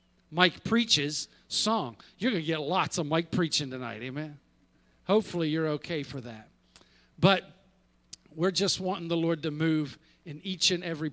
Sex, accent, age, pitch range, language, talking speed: male, American, 50-69, 130-195 Hz, English, 160 wpm